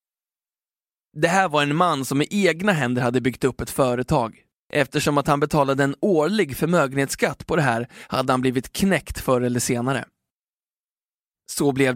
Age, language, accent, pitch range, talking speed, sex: 20-39, Swedish, native, 125-150 Hz, 165 wpm, male